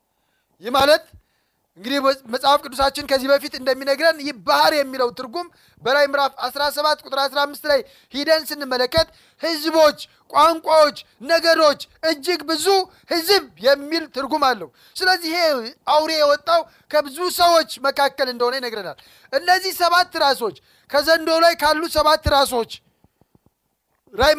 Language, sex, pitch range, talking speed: Amharic, male, 270-320 Hz, 110 wpm